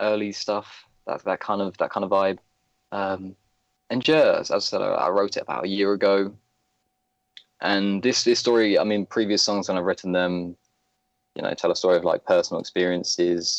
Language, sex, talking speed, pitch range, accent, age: English, male, 195 wpm, 95-110 Hz, British, 20-39